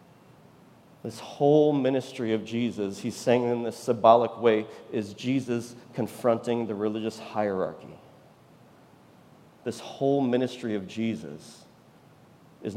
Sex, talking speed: male, 110 wpm